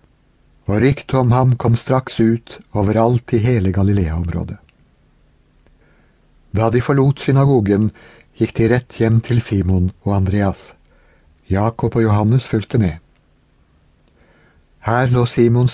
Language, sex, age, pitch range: English, male, 60-79, 85-115 Hz